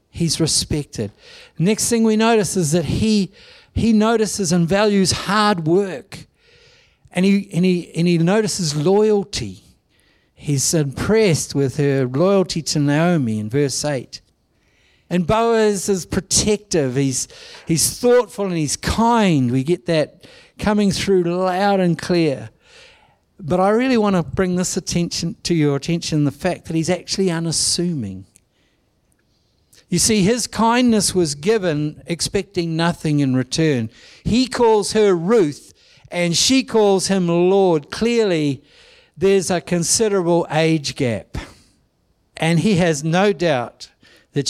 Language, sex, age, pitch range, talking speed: English, male, 60-79, 145-200 Hz, 135 wpm